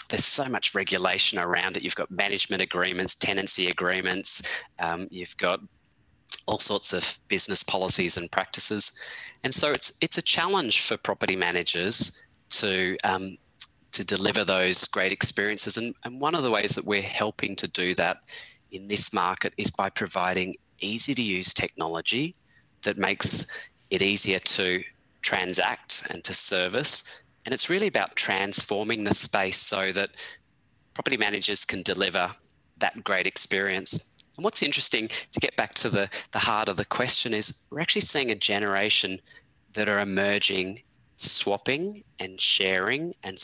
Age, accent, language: 20-39, Australian, English